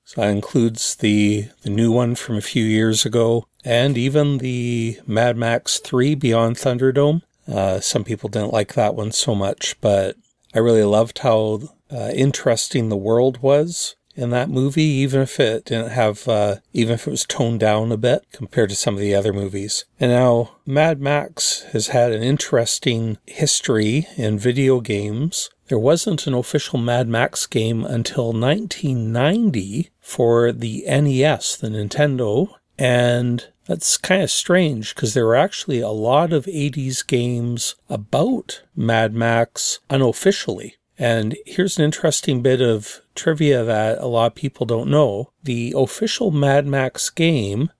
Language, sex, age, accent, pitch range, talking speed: English, male, 40-59, American, 115-145 Hz, 160 wpm